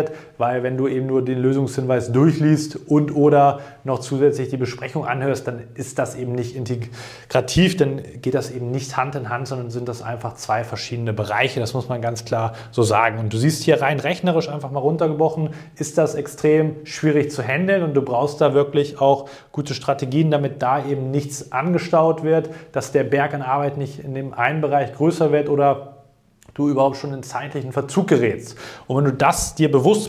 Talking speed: 195 wpm